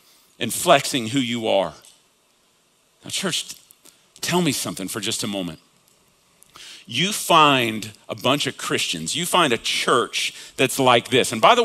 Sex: male